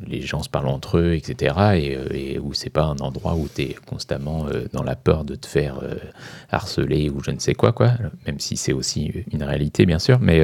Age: 30-49